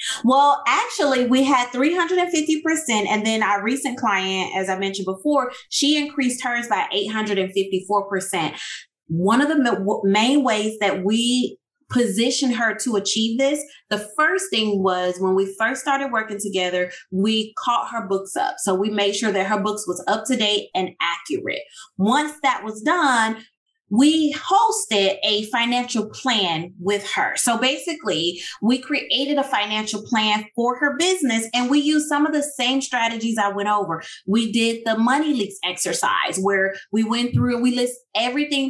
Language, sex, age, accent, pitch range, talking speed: English, female, 20-39, American, 200-270 Hz, 160 wpm